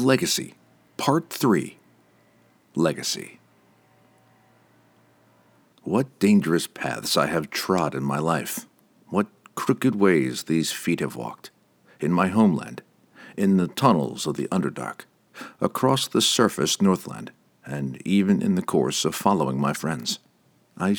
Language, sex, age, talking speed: English, male, 50-69, 125 wpm